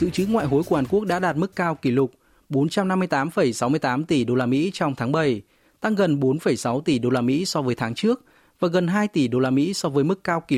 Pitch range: 130-175 Hz